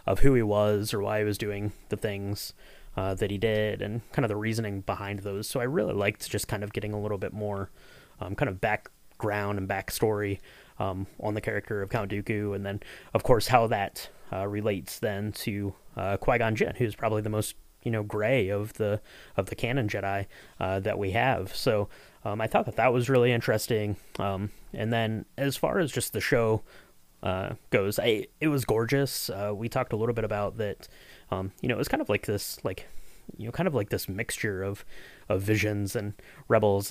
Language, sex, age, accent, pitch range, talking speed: English, male, 20-39, American, 100-115 Hz, 215 wpm